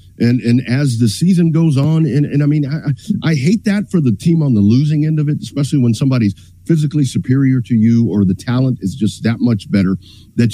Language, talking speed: English, 230 wpm